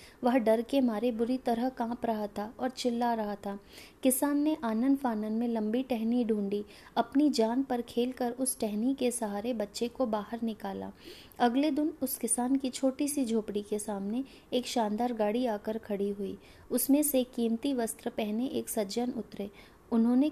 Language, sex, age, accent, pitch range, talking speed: Hindi, female, 20-39, native, 215-250 Hz, 175 wpm